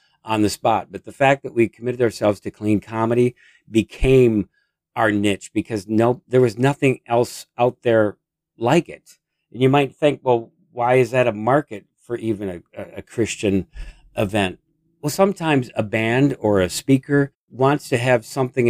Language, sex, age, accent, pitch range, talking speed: English, male, 50-69, American, 95-125 Hz, 175 wpm